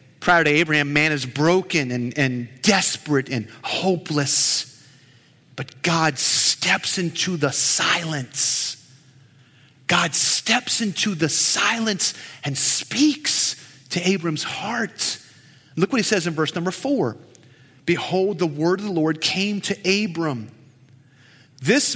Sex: male